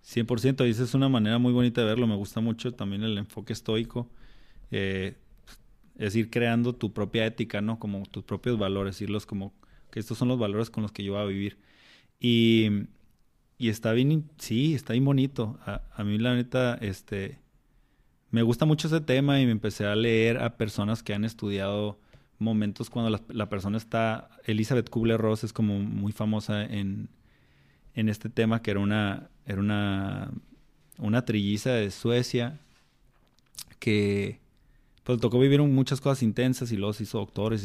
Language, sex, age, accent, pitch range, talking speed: Spanish, male, 20-39, Mexican, 105-125 Hz, 175 wpm